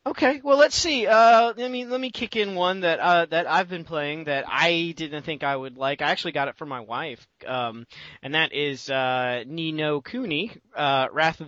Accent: American